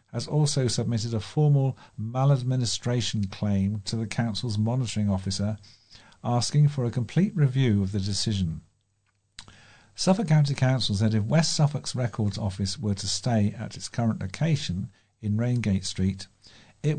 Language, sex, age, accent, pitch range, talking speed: English, male, 50-69, British, 105-130 Hz, 140 wpm